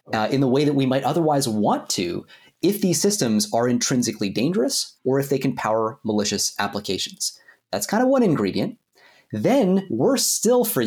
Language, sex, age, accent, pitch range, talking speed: English, male, 30-49, American, 115-180 Hz, 175 wpm